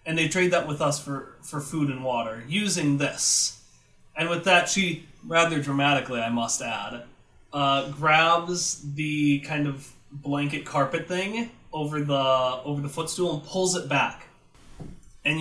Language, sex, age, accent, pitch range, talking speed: English, male, 20-39, American, 145-180 Hz, 150 wpm